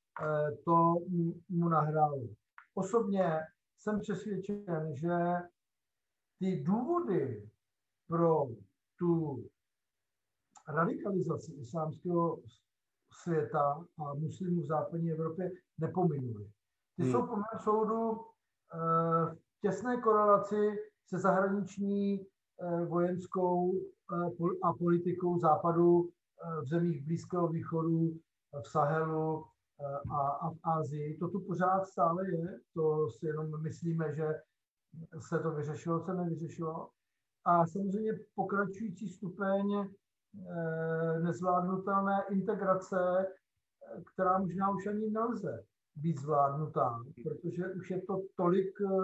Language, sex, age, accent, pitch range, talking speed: English, male, 60-79, Czech, 155-185 Hz, 90 wpm